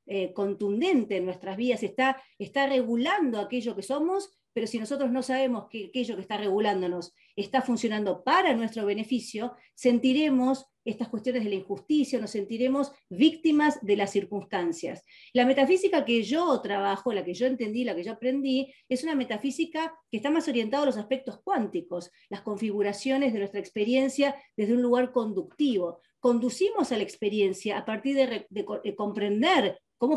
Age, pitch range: 40-59, 205-270 Hz